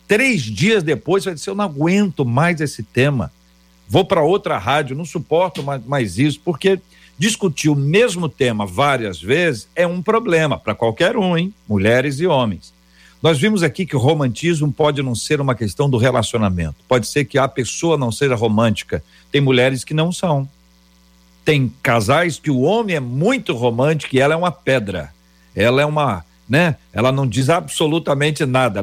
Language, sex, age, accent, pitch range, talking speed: Portuguese, male, 60-79, Brazilian, 115-155 Hz, 175 wpm